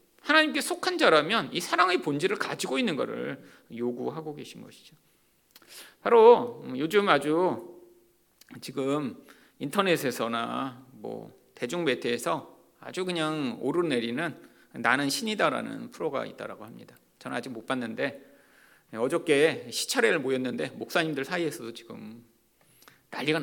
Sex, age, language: male, 40-59, Korean